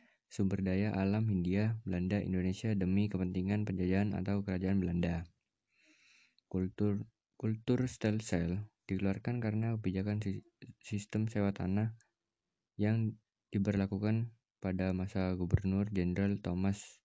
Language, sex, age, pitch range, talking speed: Indonesian, male, 20-39, 95-110 Hz, 100 wpm